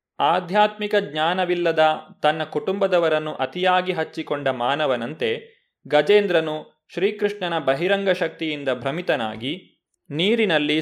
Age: 30-49